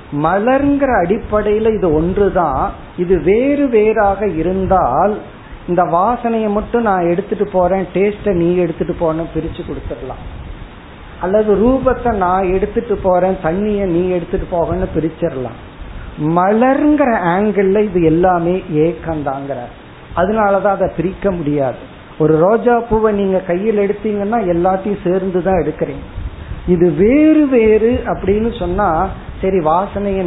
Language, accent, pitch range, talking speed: Tamil, native, 160-205 Hz, 110 wpm